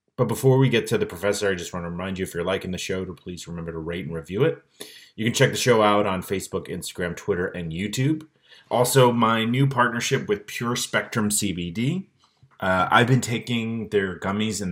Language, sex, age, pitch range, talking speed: English, male, 30-49, 85-120 Hz, 215 wpm